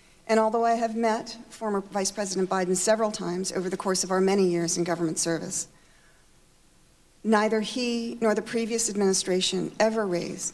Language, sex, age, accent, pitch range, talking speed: English, female, 40-59, American, 175-220 Hz, 165 wpm